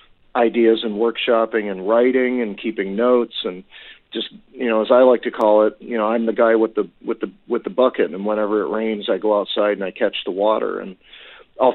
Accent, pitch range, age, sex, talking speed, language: American, 115-145 Hz, 40-59, male, 225 wpm, English